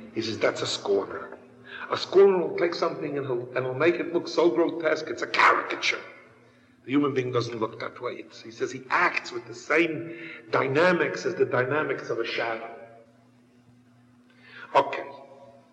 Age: 50-69